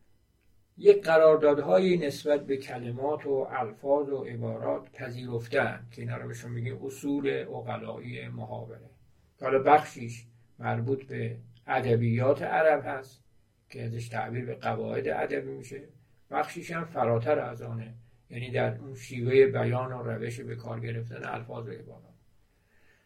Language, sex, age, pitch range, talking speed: Persian, male, 50-69, 115-145 Hz, 130 wpm